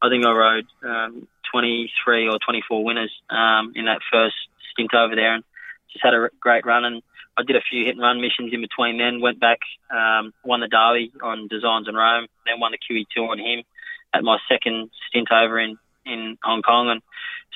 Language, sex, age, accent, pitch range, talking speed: English, male, 20-39, Australian, 110-120 Hz, 200 wpm